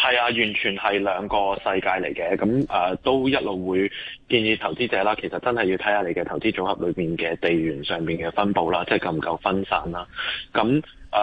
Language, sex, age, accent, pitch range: Chinese, male, 20-39, native, 95-120 Hz